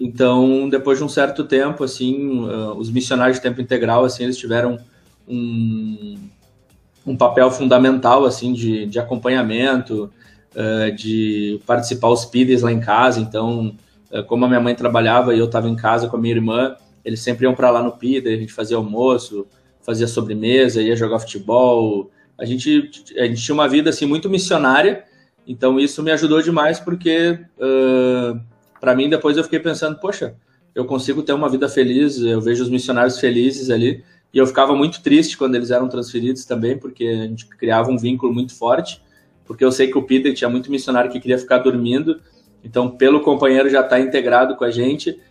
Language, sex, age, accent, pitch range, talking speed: Portuguese, male, 20-39, Brazilian, 120-135 Hz, 185 wpm